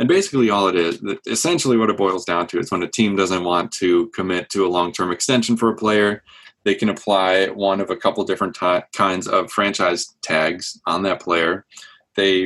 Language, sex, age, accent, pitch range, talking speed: English, male, 20-39, American, 95-115 Hz, 205 wpm